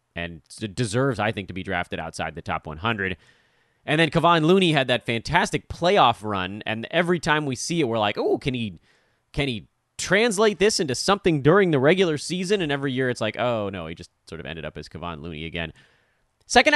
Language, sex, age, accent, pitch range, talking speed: English, male, 30-49, American, 105-150 Hz, 210 wpm